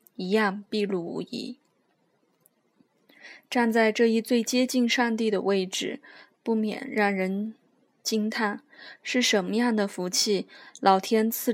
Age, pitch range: 20-39, 195-230 Hz